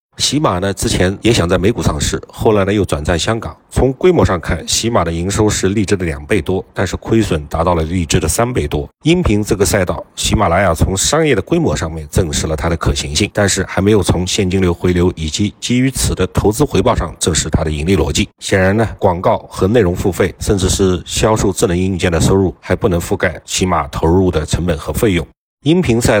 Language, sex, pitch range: Chinese, male, 85-105 Hz